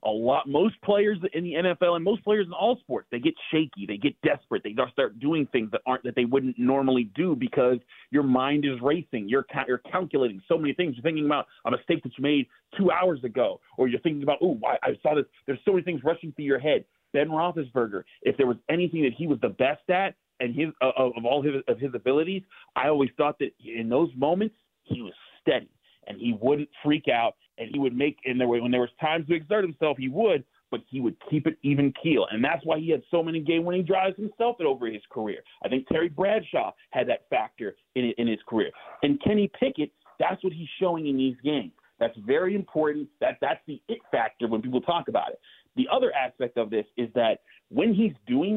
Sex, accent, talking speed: male, American, 230 wpm